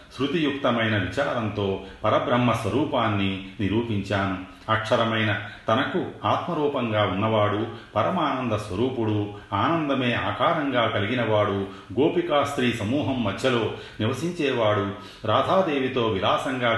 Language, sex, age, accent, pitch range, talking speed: Telugu, male, 40-59, native, 100-125 Hz, 70 wpm